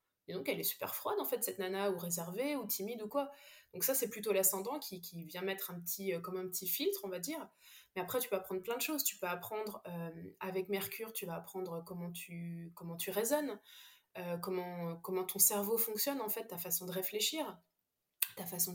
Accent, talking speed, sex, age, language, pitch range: French, 225 wpm, female, 20-39, French, 180-215 Hz